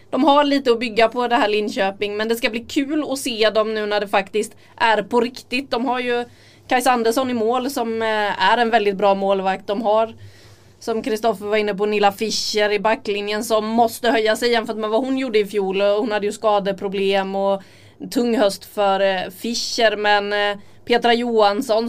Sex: female